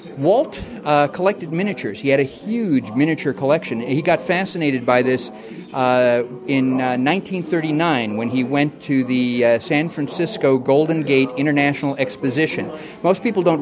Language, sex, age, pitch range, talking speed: English, male, 40-59, 125-160 Hz, 150 wpm